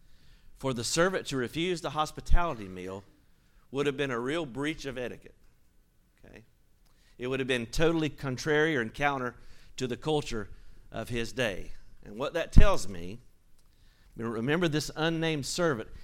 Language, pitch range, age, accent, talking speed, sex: English, 110-140 Hz, 50-69, American, 150 wpm, male